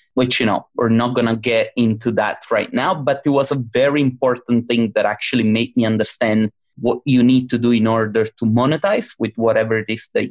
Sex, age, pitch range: male, 30-49, 110-135 Hz